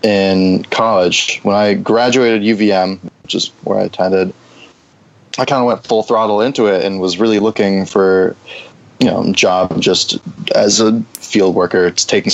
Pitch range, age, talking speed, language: 90-105 Hz, 20-39, 160 wpm, English